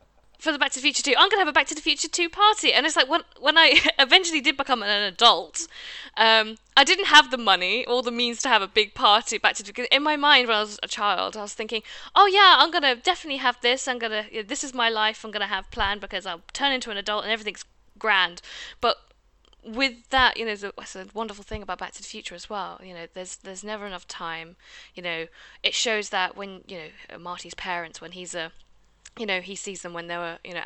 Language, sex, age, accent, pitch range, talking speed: English, female, 10-29, British, 180-240 Hz, 265 wpm